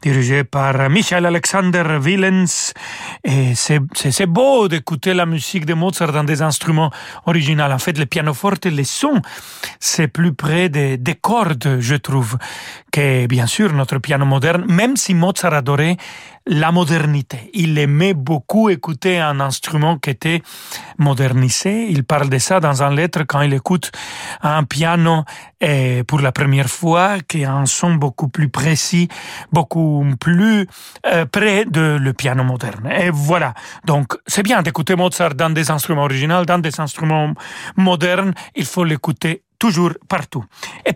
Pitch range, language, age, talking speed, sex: 140-180 Hz, French, 40-59, 155 wpm, male